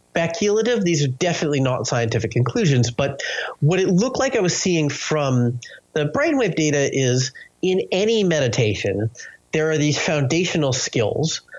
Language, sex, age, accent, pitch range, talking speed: English, male, 30-49, American, 120-165 Hz, 145 wpm